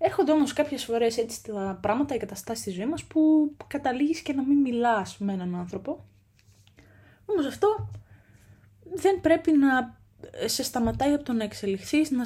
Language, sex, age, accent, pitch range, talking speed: Greek, female, 20-39, native, 195-280 Hz, 160 wpm